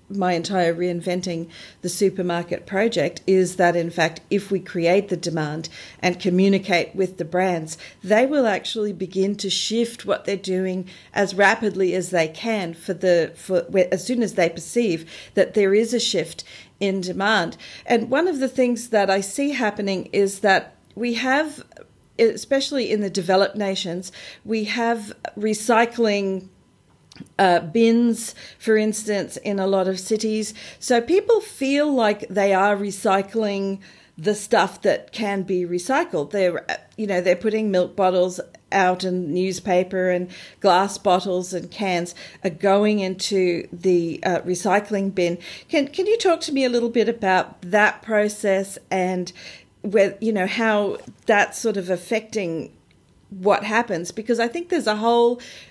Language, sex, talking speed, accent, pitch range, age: English, female, 155 wpm, Australian, 180-220 Hz, 40-59